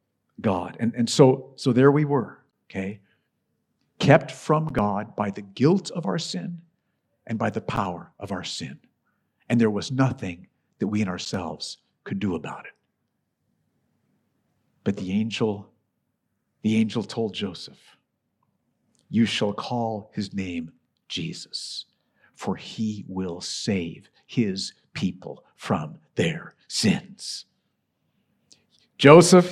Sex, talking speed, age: male, 120 wpm, 50-69